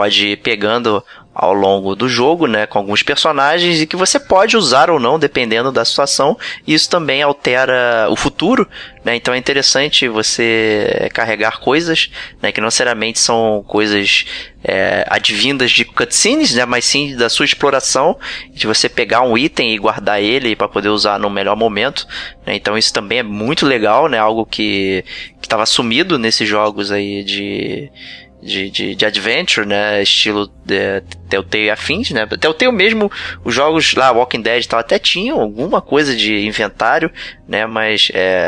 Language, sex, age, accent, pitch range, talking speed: Portuguese, male, 20-39, Brazilian, 105-125 Hz, 170 wpm